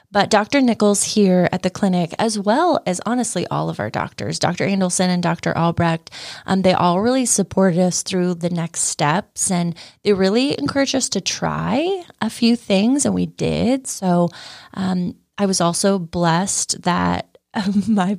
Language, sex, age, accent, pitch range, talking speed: English, female, 20-39, American, 175-210 Hz, 170 wpm